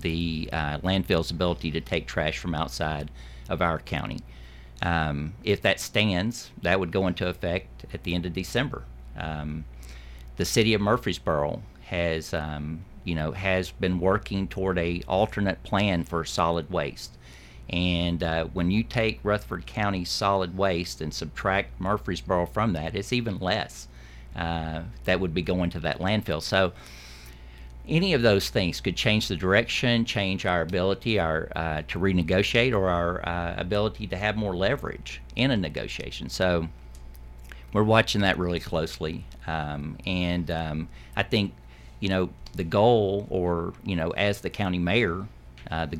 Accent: American